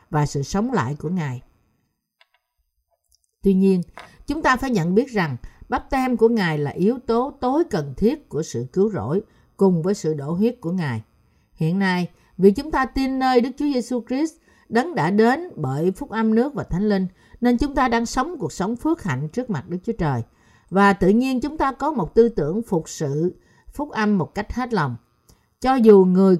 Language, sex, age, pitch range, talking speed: Vietnamese, female, 60-79, 155-230 Hz, 205 wpm